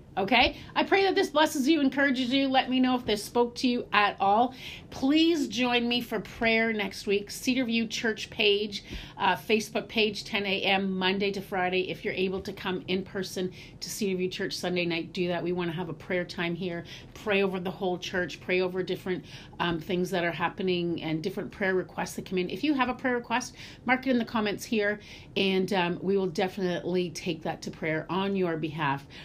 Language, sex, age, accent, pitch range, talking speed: English, female, 40-59, American, 180-240 Hz, 210 wpm